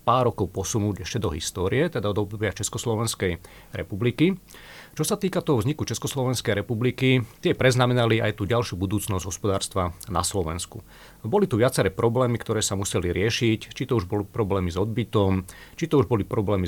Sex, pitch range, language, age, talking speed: male, 95-120 Hz, Slovak, 40-59, 170 wpm